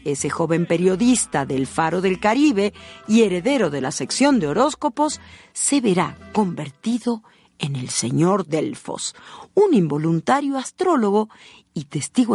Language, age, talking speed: Spanish, 50-69, 125 wpm